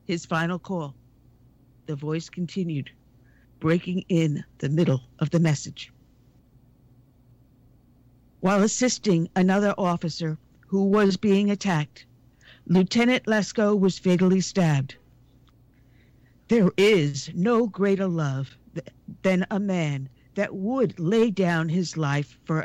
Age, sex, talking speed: 50-69, female, 110 wpm